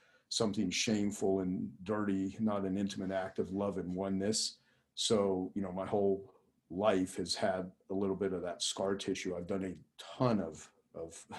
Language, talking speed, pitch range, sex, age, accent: English, 175 wpm, 95-105 Hz, male, 50-69, American